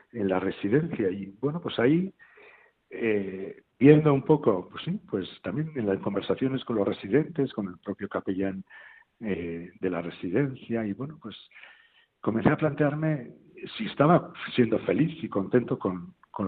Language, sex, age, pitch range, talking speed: Spanish, male, 60-79, 100-145 Hz, 155 wpm